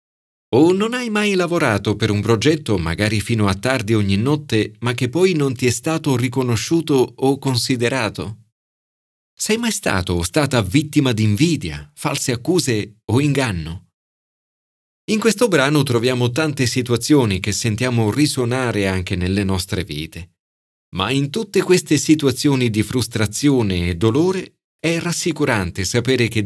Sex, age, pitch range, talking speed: male, 40-59, 100-155 Hz, 140 wpm